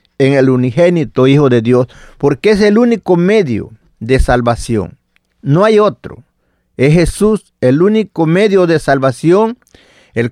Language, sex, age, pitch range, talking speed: Spanish, male, 50-69, 130-185 Hz, 140 wpm